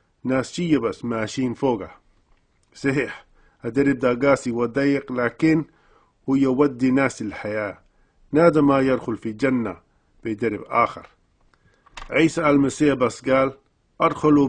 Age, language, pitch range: 50-69, Arabic, 115-140 Hz